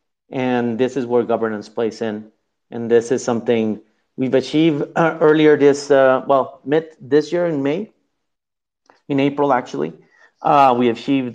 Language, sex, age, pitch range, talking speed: English, male, 30-49, 110-135 Hz, 150 wpm